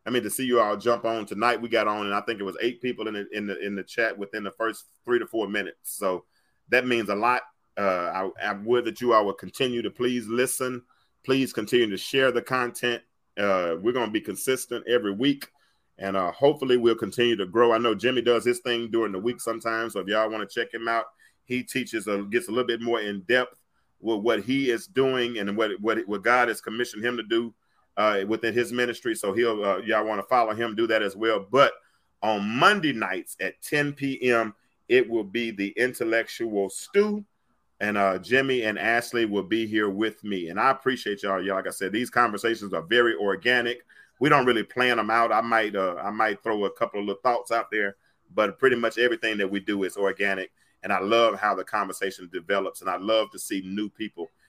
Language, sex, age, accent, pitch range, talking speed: English, male, 30-49, American, 105-125 Hz, 230 wpm